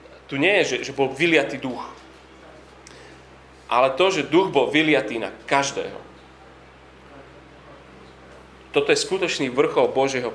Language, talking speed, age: Slovak, 120 wpm, 30-49